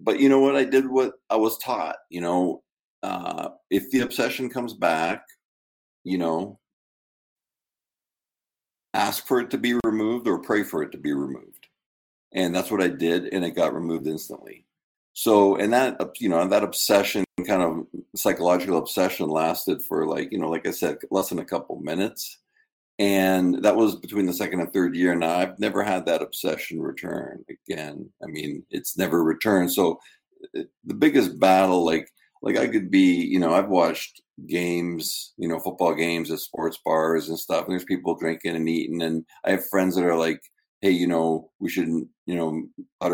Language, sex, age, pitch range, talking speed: English, male, 50-69, 80-110 Hz, 185 wpm